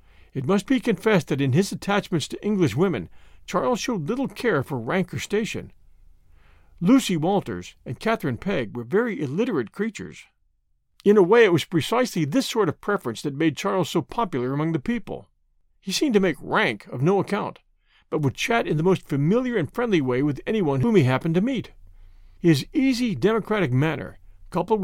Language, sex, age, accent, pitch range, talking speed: English, male, 50-69, American, 135-205 Hz, 185 wpm